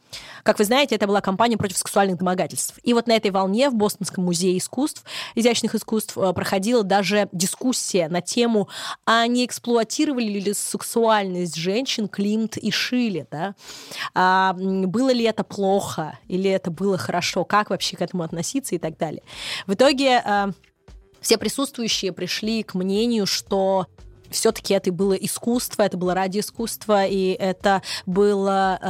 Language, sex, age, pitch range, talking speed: Russian, female, 20-39, 180-215 Hz, 145 wpm